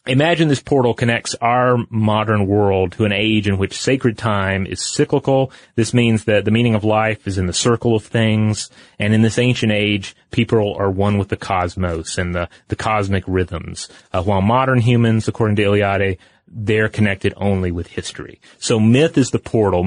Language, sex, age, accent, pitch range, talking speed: English, male, 30-49, American, 100-120 Hz, 185 wpm